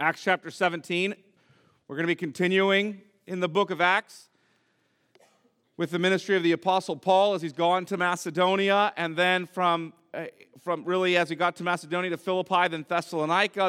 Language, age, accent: English, 40-59, American